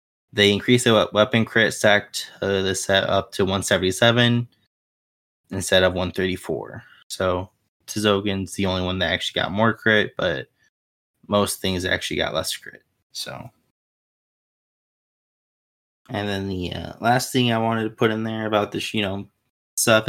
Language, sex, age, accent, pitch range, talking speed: English, male, 20-39, American, 95-115 Hz, 150 wpm